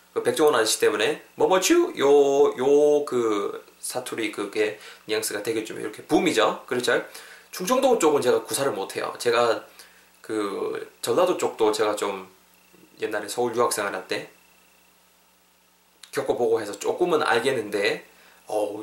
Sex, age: male, 20-39